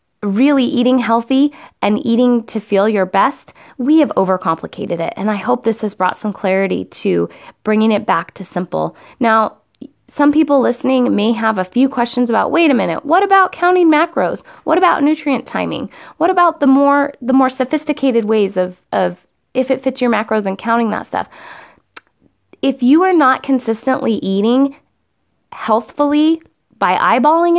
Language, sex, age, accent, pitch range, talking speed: English, female, 20-39, American, 200-270 Hz, 165 wpm